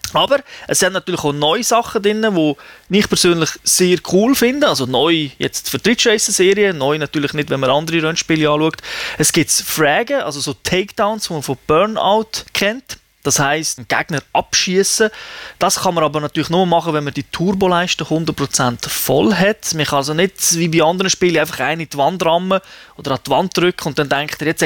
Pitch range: 150-195 Hz